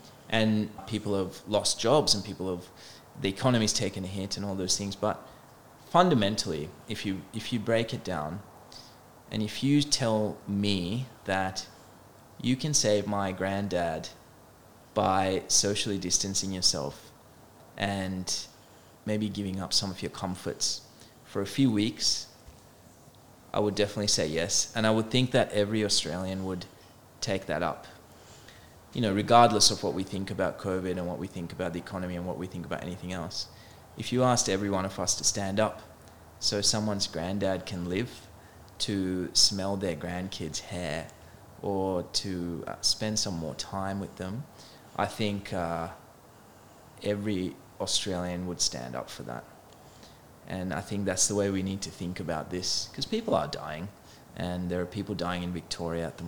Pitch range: 90-110 Hz